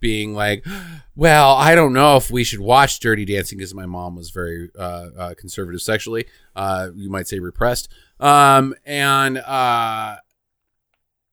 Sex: male